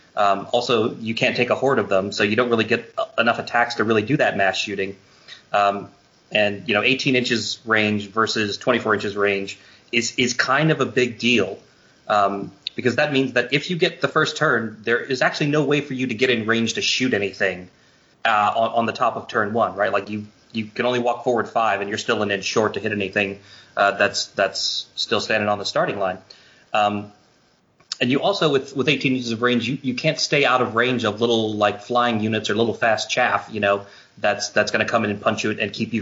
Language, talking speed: English, 235 wpm